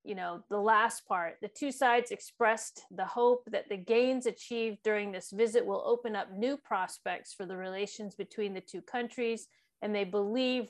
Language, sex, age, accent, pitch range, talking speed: English, female, 40-59, American, 200-240 Hz, 185 wpm